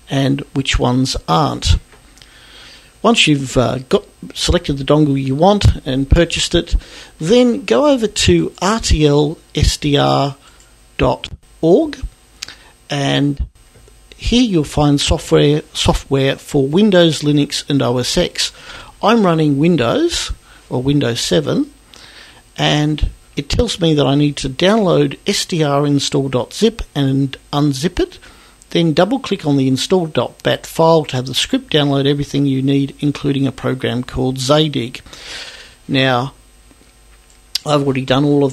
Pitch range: 135-160 Hz